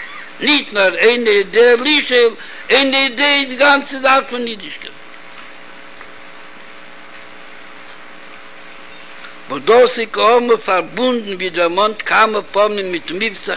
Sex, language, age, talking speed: male, Hebrew, 60-79, 100 wpm